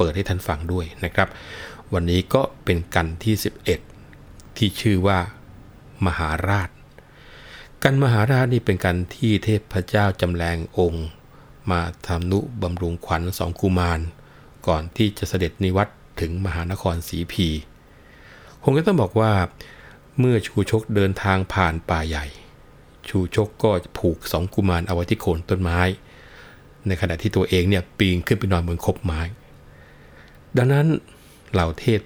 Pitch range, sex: 85-105 Hz, male